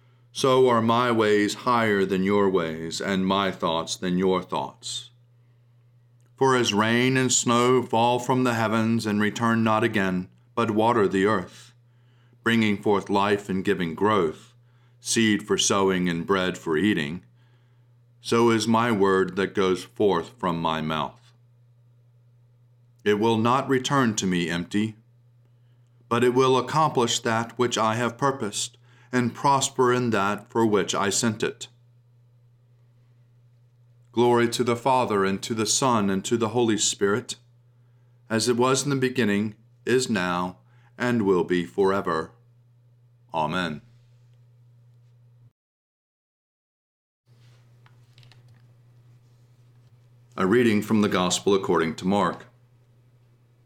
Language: English